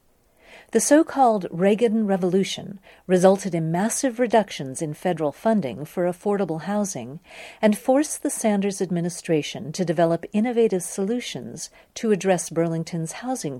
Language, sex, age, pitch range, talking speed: English, female, 50-69, 165-225 Hz, 120 wpm